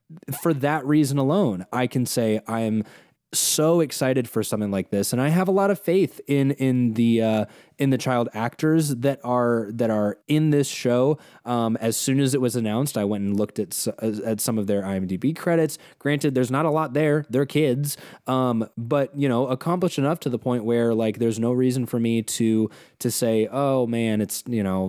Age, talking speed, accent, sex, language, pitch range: 20-39, 205 wpm, American, male, English, 110-145 Hz